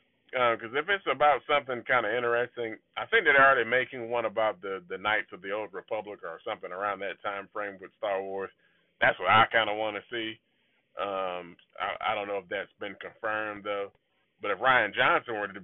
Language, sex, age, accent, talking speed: English, male, 20-39, American, 215 wpm